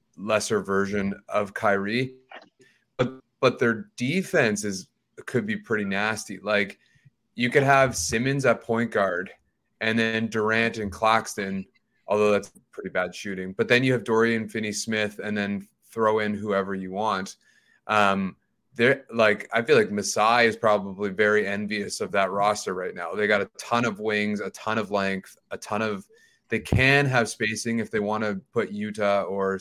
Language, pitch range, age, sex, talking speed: English, 100-120 Hz, 30-49, male, 170 wpm